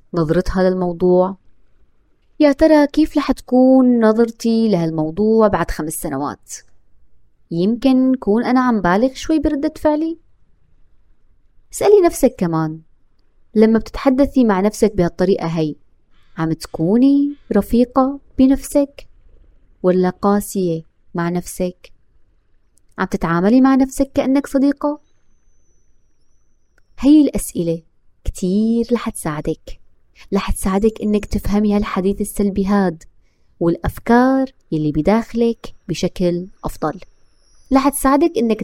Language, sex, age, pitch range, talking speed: Arabic, female, 20-39, 175-265 Hz, 100 wpm